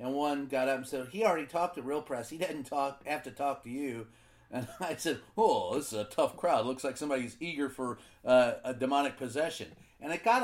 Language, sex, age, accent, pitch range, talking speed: English, male, 40-59, American, 120-145 Hz, 235 wpm